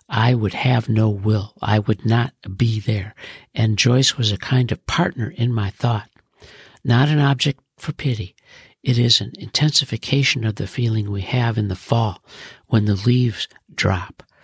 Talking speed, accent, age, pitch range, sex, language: 170 wpm, American, 60-79, 105-130 Hz, male, English